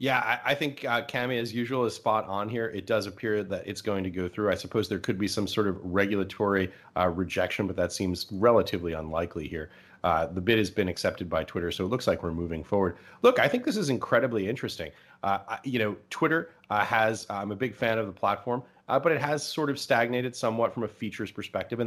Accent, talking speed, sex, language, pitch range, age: American, 235 wpm, male, English, 95-115 Hz, 30-49